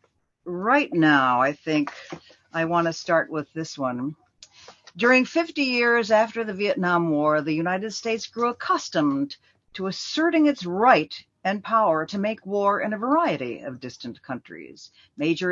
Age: 60-79